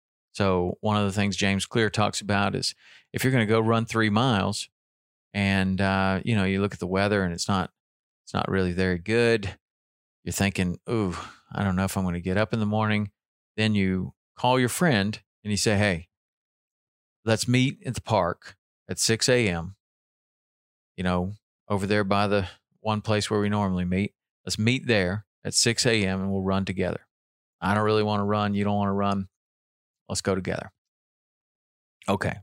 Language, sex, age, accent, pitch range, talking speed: English, male, 40-59, American, 95-110 Hz, 190 wpm